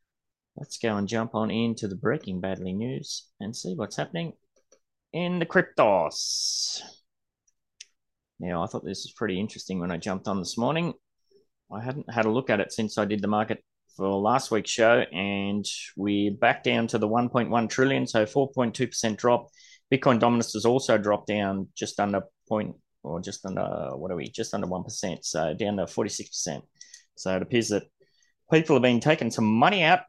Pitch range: 105-145 Hz